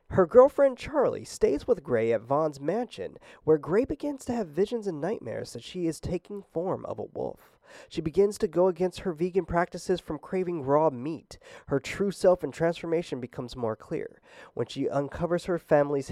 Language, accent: English, American